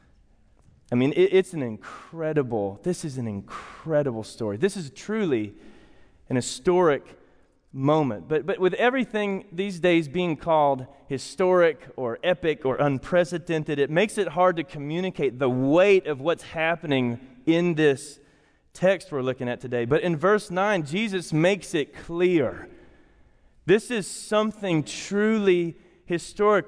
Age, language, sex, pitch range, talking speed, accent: 30-49, English, male, 135-190 Hz, 135 wpm, American